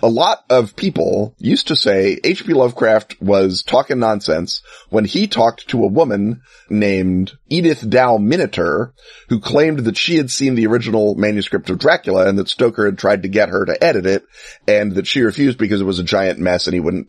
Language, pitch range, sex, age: English, 95-125 Hz, male, 30-49